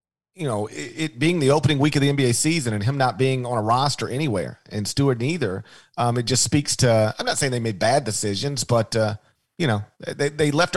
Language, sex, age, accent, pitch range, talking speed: English, male, 40-59, American, 125-165 Hz, 235 wpm